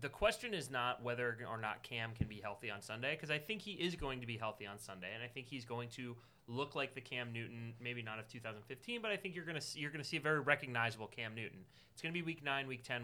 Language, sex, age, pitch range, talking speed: English, male, 30-49, 115-140 Hz, 275 wpm